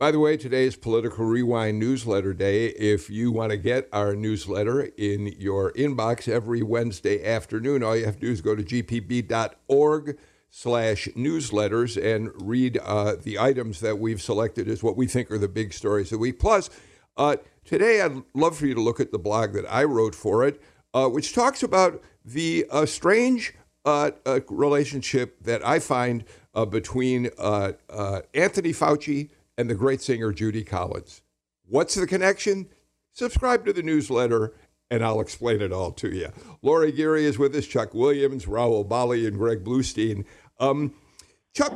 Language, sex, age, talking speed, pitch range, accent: English, male, 60-79, 170 wpm, 110-145 Hz, American